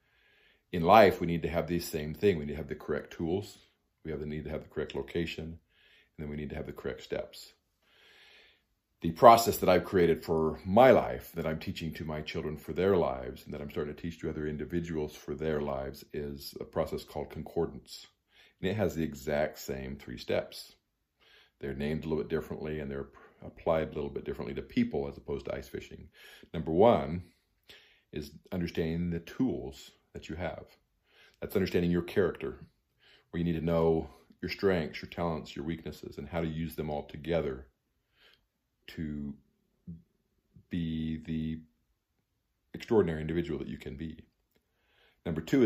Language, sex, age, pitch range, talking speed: English, male, 50-69, 75-85 Hz, 180 wpm